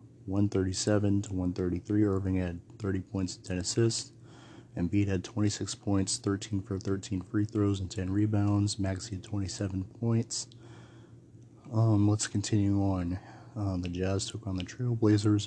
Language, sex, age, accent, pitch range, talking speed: English, male, 30-49, American, 100-115 Hz, 145 wpm